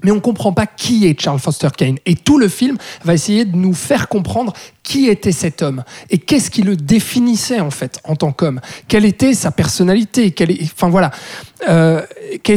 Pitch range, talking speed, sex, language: 170-220 Hz, 205 wpm, male, French